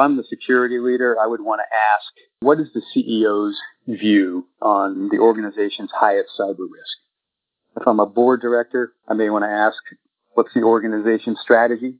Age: 40-59